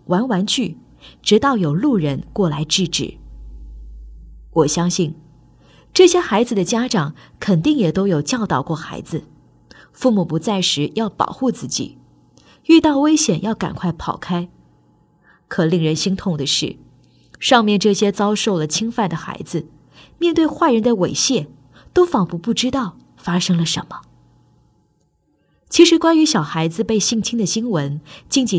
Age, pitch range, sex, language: 20-39, 160-225 Hz, female, Chinese